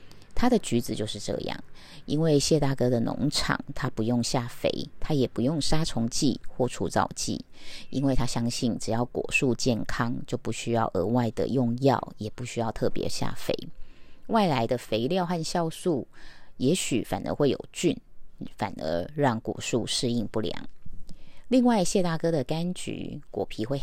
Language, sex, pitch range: Chinese, female, 120-160 Hz